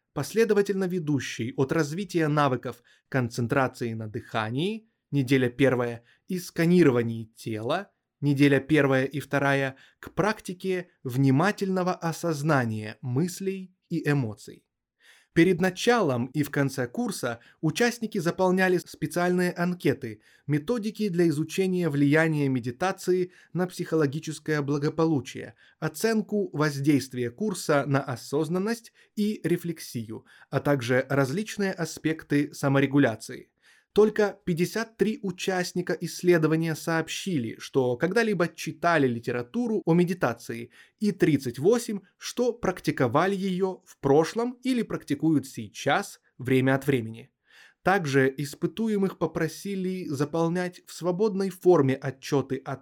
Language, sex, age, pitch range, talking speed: Russian, male, 20-39, 135-185 Hz, 100 wpm